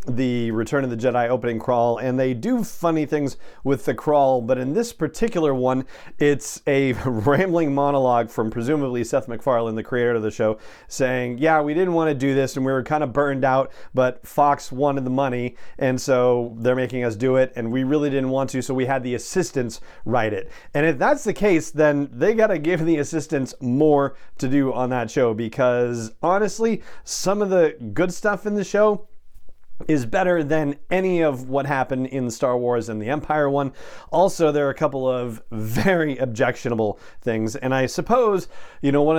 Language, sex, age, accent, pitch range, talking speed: English, male, 40-59, American, 120-150 Hz, 195 wpm